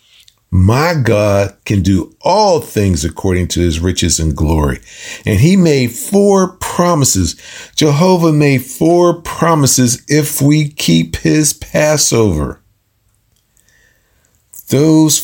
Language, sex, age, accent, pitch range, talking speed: English, male, 50-69, American, 105-140 Hz, 105 wpm